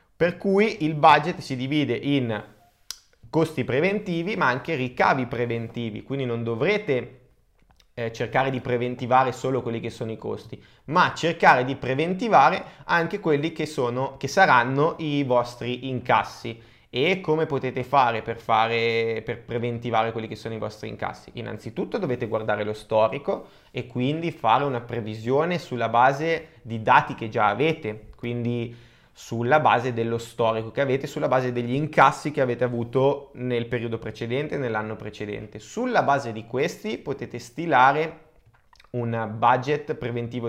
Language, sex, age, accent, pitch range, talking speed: Italian, male, 20-39, native, 115-140 Hz, 145 wpm